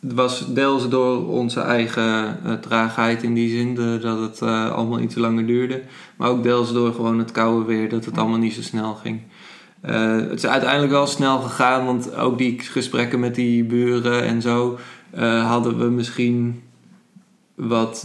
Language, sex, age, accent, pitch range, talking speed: Dutch, male, 20-39, Dutch, 115-130 Hz, 175 wpm